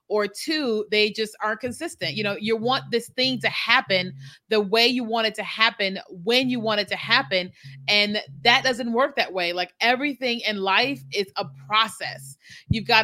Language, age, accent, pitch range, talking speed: English, 30-49, American, 190-225 Hz, 195 wpm